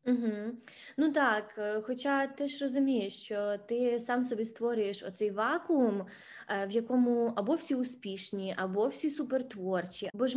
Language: Ukrainian